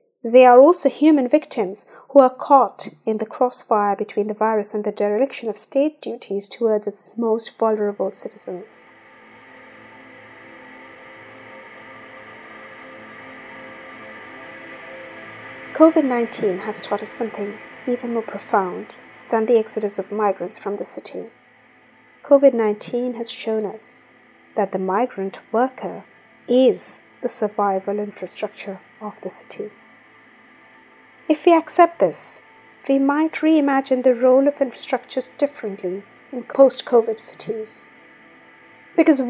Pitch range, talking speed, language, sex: 215-265 Hz, 110 wpm, English, female